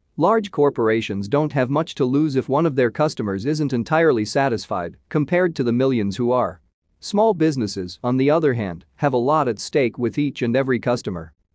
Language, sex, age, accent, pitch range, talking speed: English, male, 40-59, American, 110-145 Hz, 190 wpm